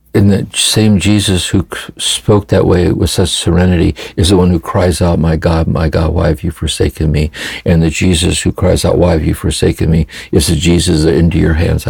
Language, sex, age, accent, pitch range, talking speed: English, male, 60-79, American, 80-95 Hz, 215 wpm